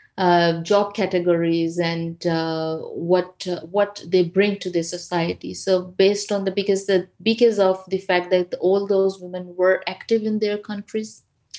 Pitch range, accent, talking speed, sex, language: 175-195 Hz, Indian, 165 wpm, female, Finnish